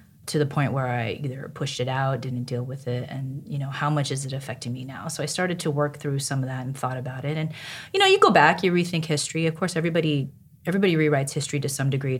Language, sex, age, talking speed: English, female, 30-49, 265 wpm